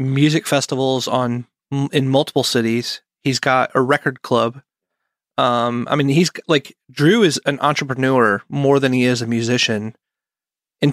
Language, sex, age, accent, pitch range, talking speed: English, male, 30-49, American, 130-145 Hz, 150 wpm